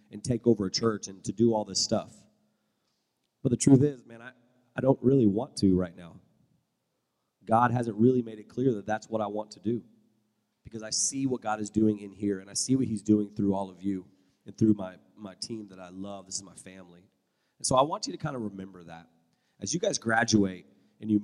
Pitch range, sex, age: 100-120 Hz, male, 30-49